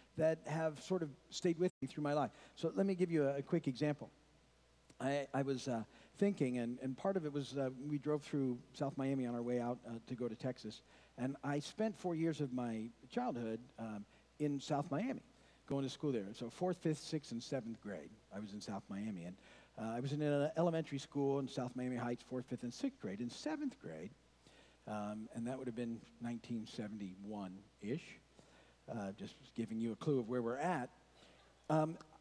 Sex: male